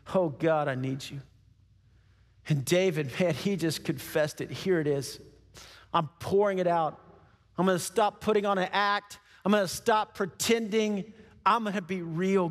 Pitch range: 140-205 Hz